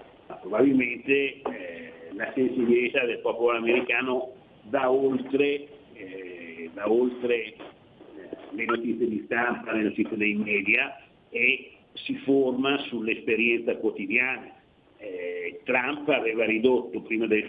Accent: native